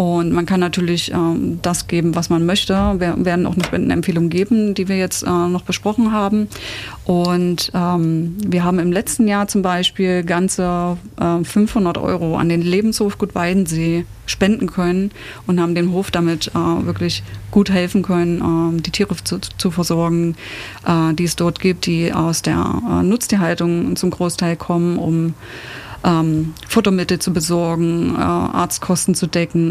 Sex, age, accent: female, 30-49, German